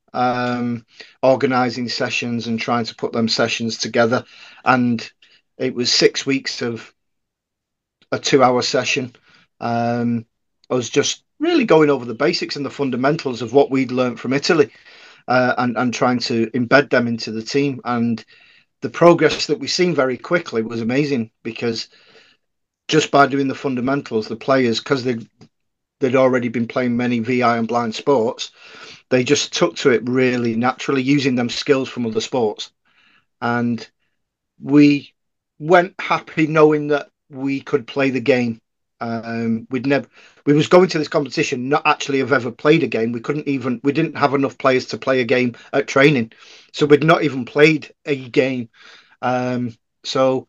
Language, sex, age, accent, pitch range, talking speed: English, male, 40-59, British, 120-145 Hz, 165 wpm